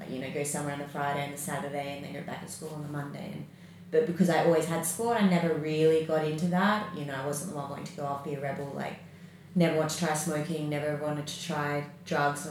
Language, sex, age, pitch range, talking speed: English, female, 30-49, 150-180 Hz, 280 wpm